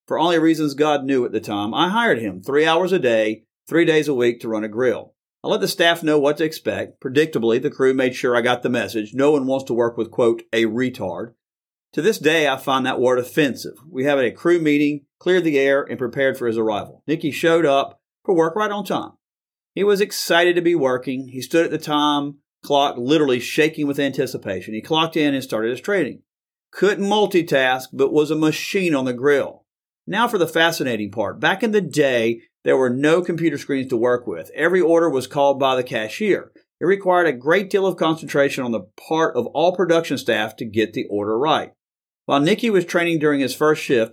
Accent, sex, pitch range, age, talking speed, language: American, male, 125-165 Hz, 40-59, 220 wpm, English